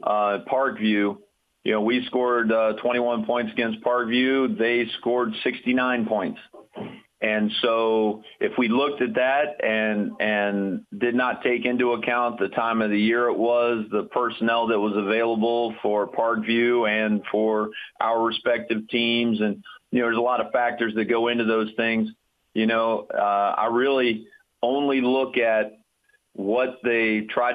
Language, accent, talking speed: English, American, 155 wpm